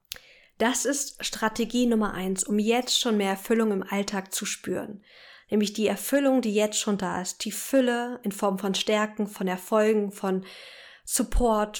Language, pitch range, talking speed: German, 205-240 Hz, 165 wpm